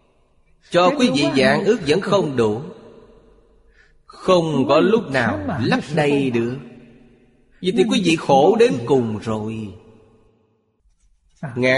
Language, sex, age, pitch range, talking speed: Vietnamese, male, 30-49, 110-155 Hz, 120 wpm